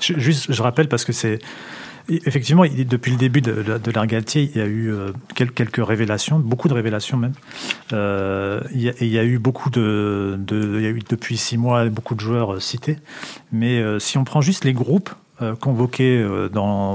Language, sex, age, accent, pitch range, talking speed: French, male, 40-59, French, 115-140 Hz, 205 wpm